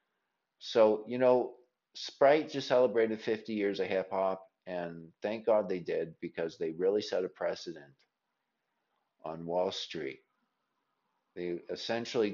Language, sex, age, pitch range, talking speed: English, male, 50-69, 95-115 Hz, 125 wpm